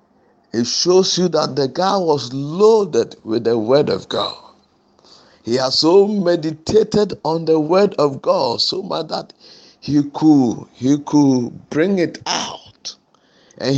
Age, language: 50-69, English